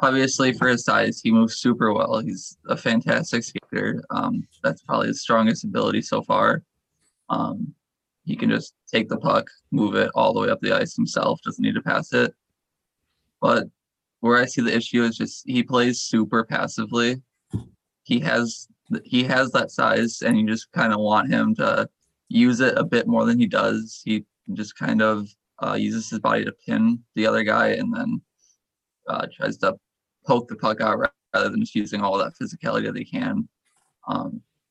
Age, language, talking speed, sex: 20-39, English, 185 wpm, male